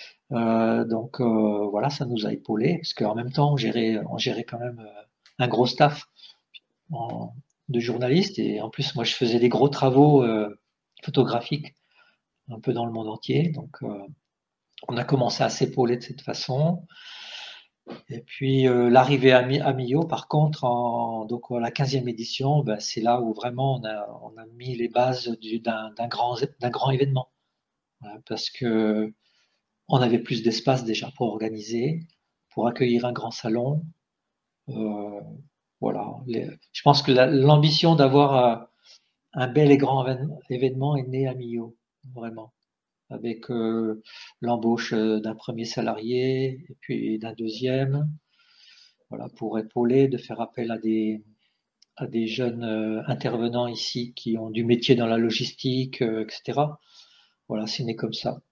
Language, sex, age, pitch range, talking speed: French, male, 50-69, 115-135 Hz, 165 wpm